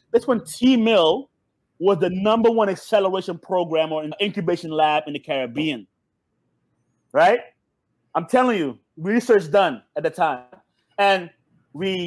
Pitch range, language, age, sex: 155-200 Hz, English, 30-49, male